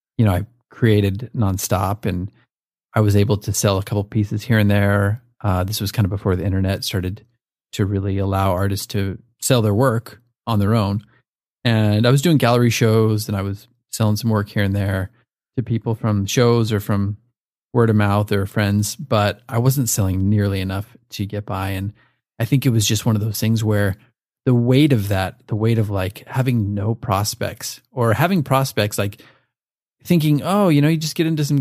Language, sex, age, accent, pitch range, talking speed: English, male, 30-49, American, 100-125 Hz, 205 wpm